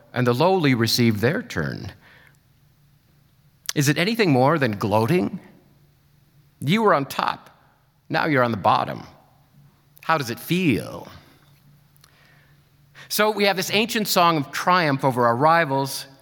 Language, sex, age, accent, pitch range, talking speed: English, male, 50-69, American, 135-165 Hz, 135 wpm